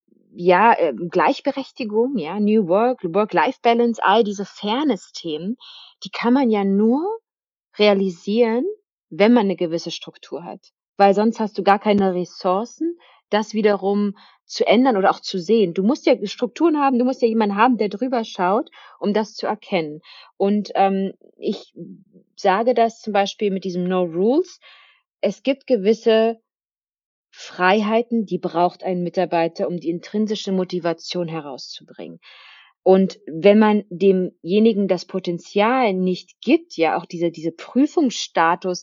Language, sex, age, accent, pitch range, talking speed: German, female, 30-49, German, 180-230 Hz, 140 wpm